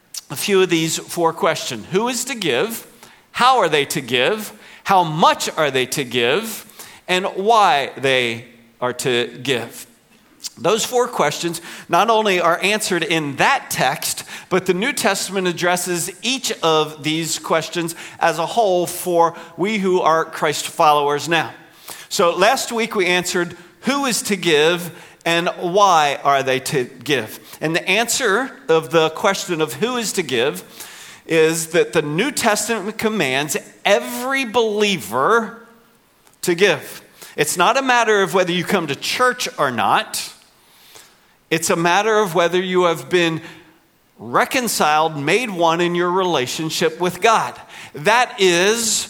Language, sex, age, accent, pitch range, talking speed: English, male, 50-69, American, 165-215 Hz, 150 wpm